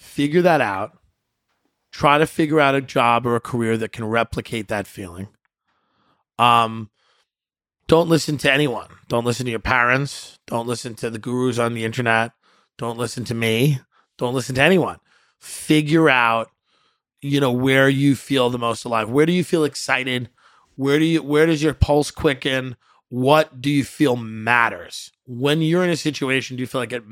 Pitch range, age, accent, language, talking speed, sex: 115-145 Hz, 30-49, American, English, 180 wpm, male